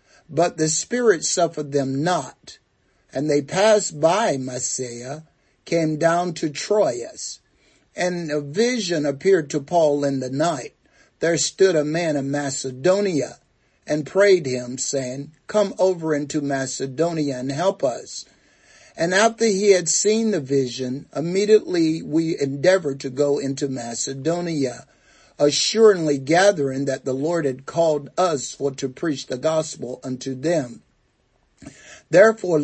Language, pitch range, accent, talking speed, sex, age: English, 135-175 Hz, American, 130 wpm, male, 50-69